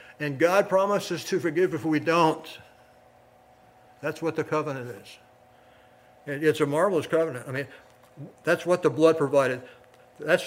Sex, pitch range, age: male, 125-170 Hz, 60-79